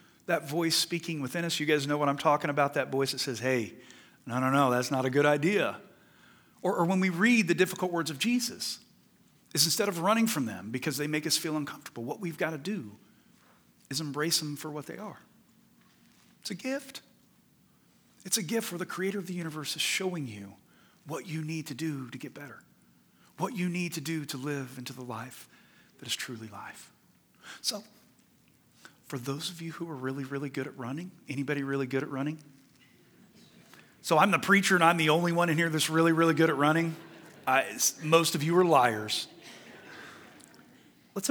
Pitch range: 140-180 Hz